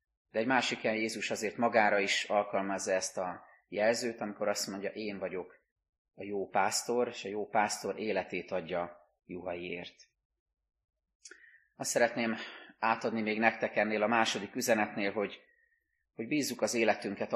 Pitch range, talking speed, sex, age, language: 95-120 Hz, 140 wpm, male, 30-49, Hungarian